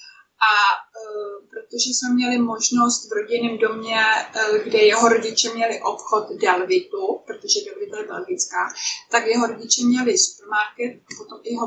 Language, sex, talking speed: Czech, female, 135 wpm